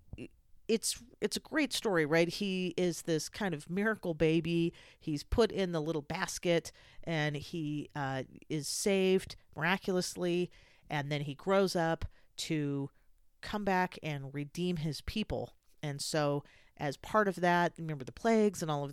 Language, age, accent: English, 40-59, American